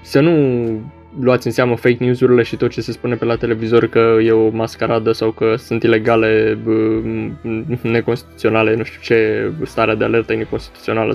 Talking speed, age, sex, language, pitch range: 165 wpm, 20-39, male, Romanian, 115-125 Hz